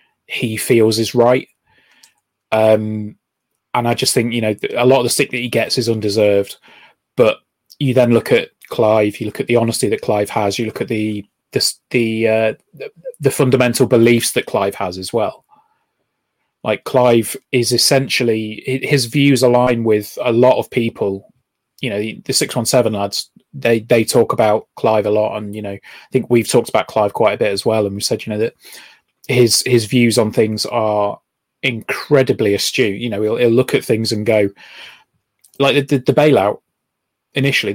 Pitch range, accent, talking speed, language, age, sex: 110-130 Hz, British, 185 wpm, English, 20-39, male